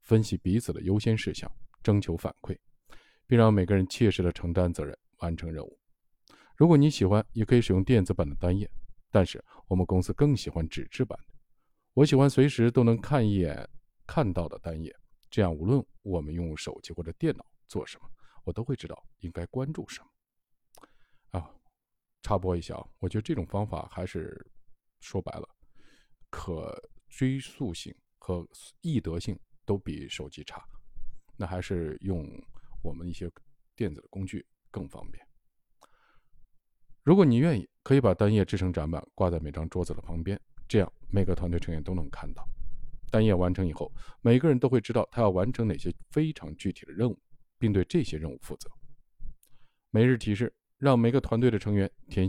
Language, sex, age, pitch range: Chinese, male, 50-69, 85-125 Hz